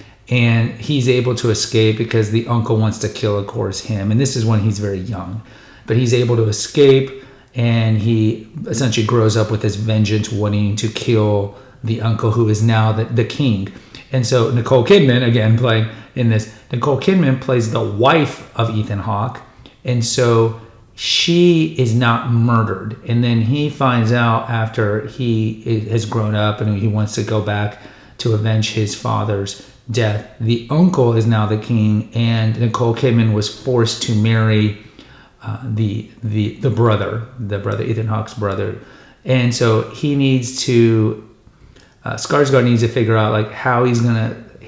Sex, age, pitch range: male, 40-59, 110-125 Hz